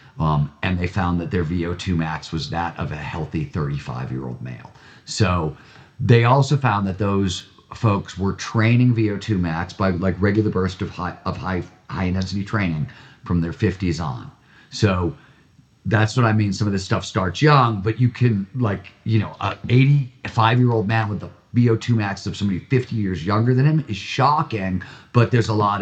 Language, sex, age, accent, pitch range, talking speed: English, male, 40-59, American, 95-125 Hz, 175 wpm